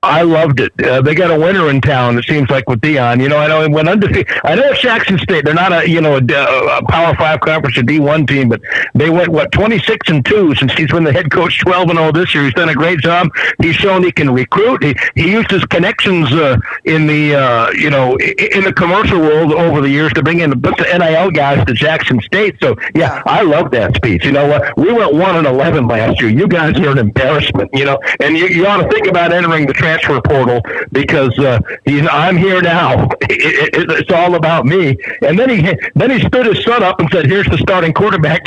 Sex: male